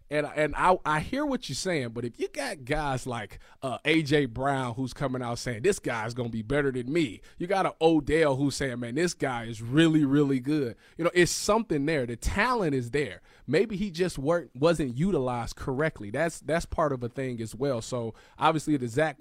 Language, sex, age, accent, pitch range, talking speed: English, male, 20-39, American, 125-155 Hz, 220 wpm